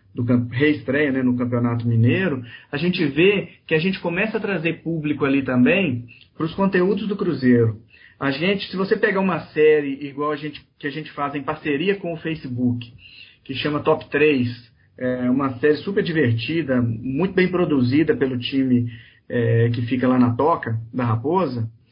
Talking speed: 160 wpm